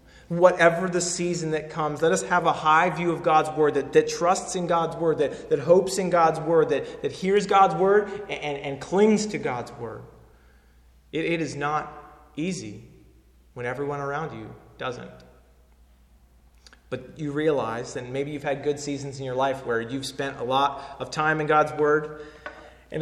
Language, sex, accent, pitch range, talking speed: English, male, American, 125-170 Hz, 185 wpm